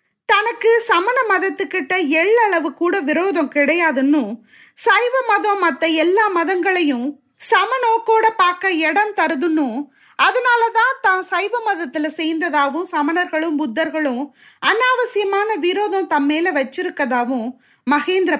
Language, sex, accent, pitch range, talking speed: Tamil, female, native, 290-390 Hz, 95 wpm